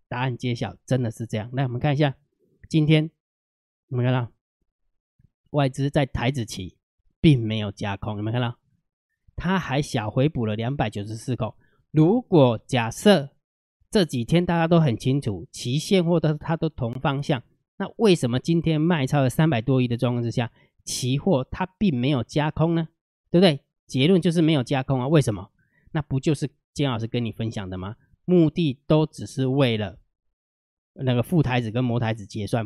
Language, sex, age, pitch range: Chinese, male, 20-39, 120-155 Hz